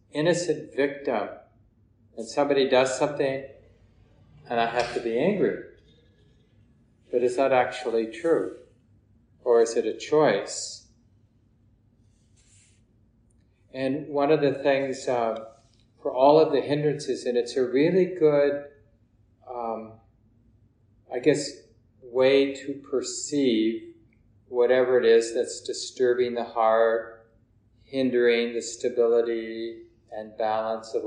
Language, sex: English, male